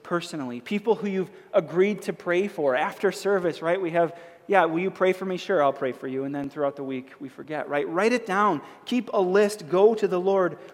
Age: 30-49